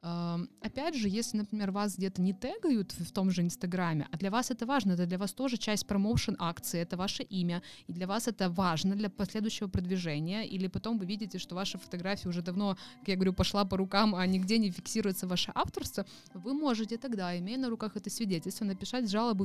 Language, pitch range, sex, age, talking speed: Russian, 175-215 Hz, female, 20-39, 200 wpm